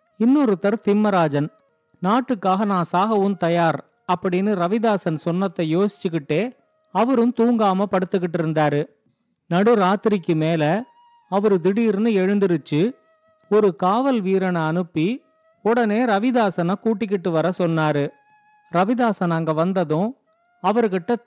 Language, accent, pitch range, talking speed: Tamil, native, 180-230 Hz, 95 wpm